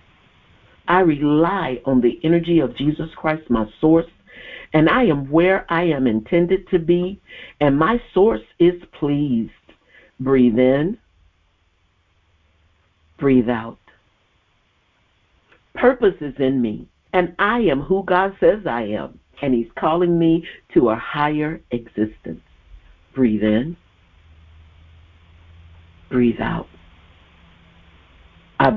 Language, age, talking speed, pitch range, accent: English, 50-69, 110 wpm, 110-175 Hz, American